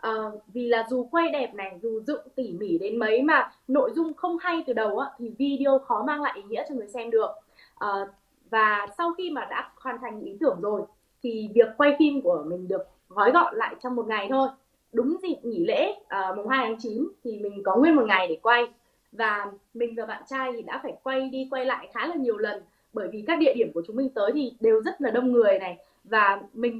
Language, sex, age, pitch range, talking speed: Vietnamese, female, 20-39, 215-280 Hz, 240 wpm